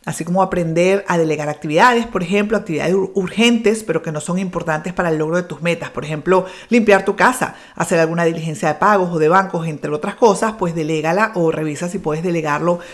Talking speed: 205 wpm